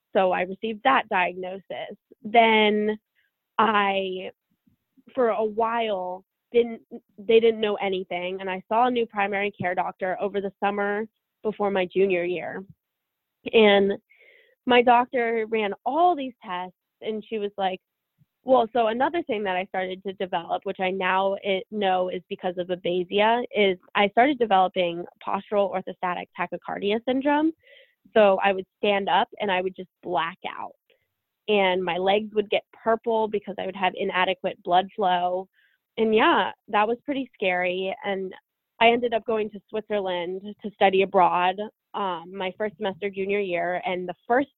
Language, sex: English, female